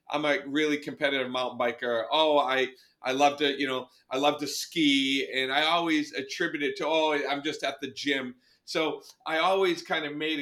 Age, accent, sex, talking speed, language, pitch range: 40-59, American, male, 200 wpm, English, 130-155 Hz